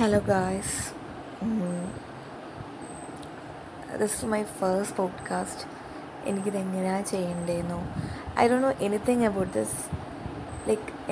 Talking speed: 105 wpm